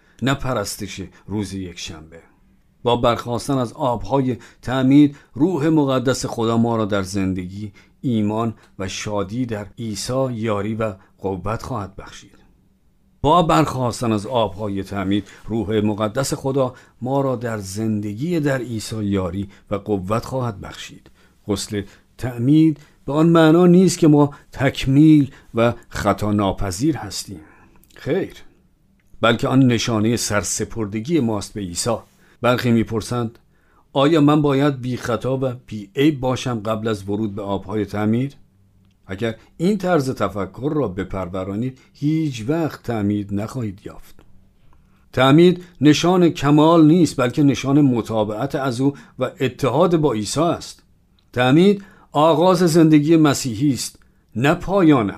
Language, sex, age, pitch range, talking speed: Persian, male, 50-69, 100-140 Hz, 120 wpm